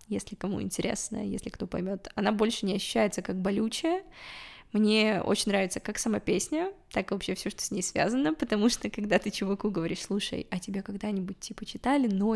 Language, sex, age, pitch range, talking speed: Russian, female, 20-39, 195-245 Hz, 190 wpm